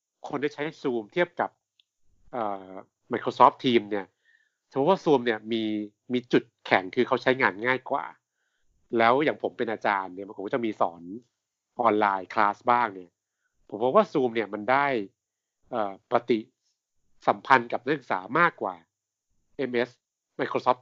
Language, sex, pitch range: Thai, male, 105-140 Hz